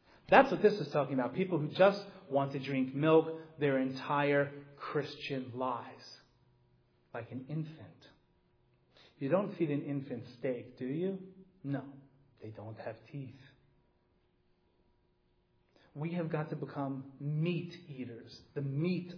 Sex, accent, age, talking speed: male, American, 40-59, 130 wpm